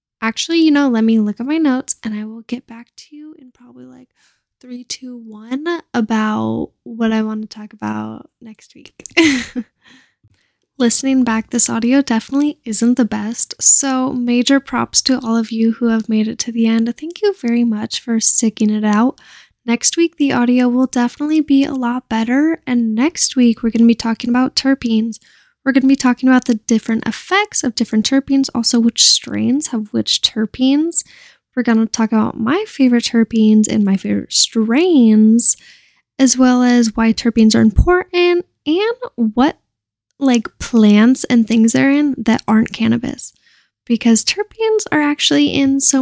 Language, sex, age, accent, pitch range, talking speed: English, female, 10-29, American, 225-275 Hz, 175 wpm